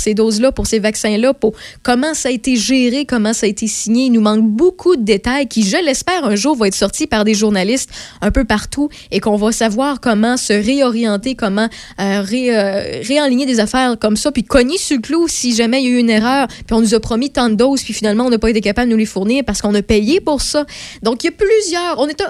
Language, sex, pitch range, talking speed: French, female, 215-265 Hz, 260 wpm